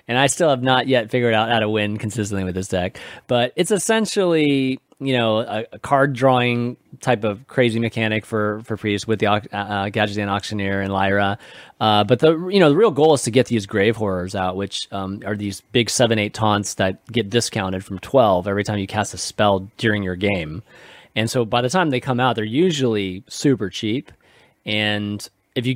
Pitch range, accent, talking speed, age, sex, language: 100-135 Hz, American, 205 wpm, 30-49, male, English